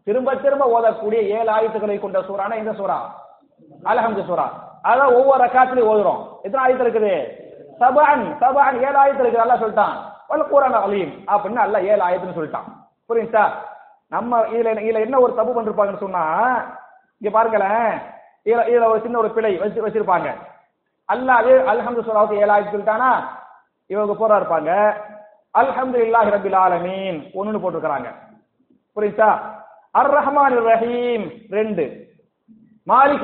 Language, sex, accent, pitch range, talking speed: English, male, Indian, 215-260 Hz, 115 wpm